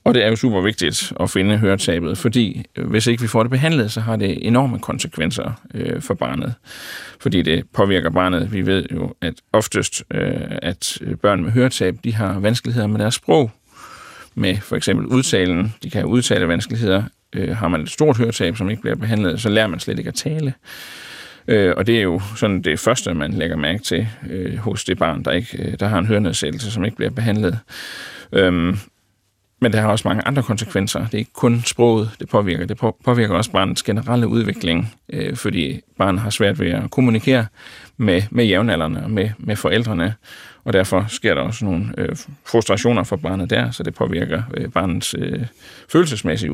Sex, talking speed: male, 185 wpm